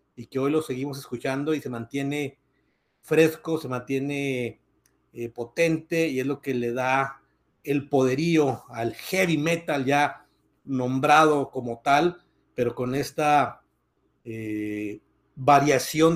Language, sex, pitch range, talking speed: Spanish, male, 130-155 Hz, 125 wpm